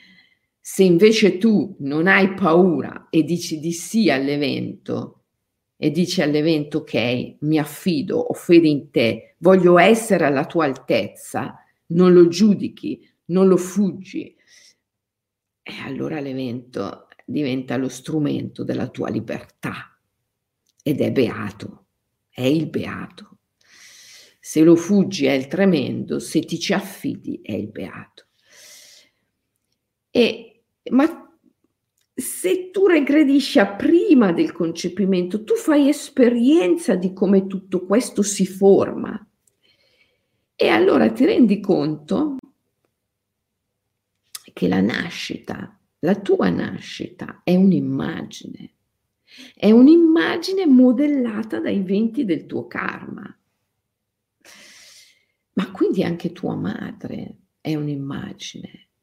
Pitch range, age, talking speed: 155-240 Hz, 50-69, 110 wpm